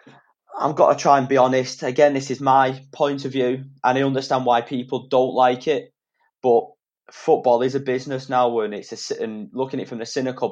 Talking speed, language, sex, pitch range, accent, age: 215 wpm, English, male, 105-130 Hz, British, 20-39